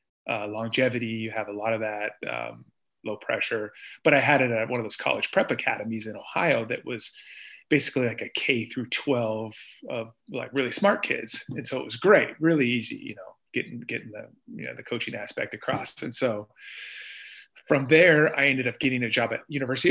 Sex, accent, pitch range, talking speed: male, American, 115-135 Hz, 200 wpm